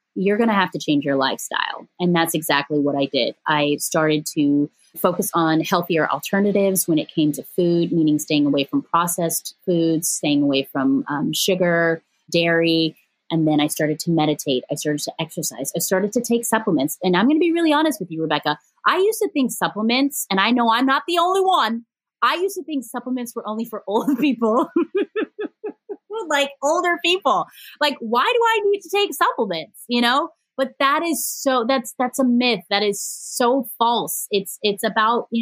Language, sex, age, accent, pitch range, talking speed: English, female, 30-49, American, 165-260 Hz, 195 wpm